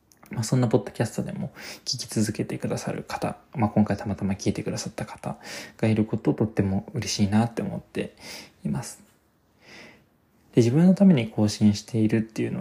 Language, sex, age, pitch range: Japanese, male, 20-39, 105-160 Hz